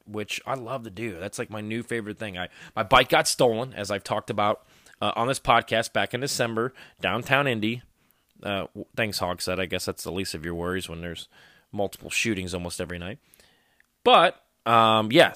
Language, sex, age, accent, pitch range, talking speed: English, male, 20-39, American, 105-130 Hz, 200 wpm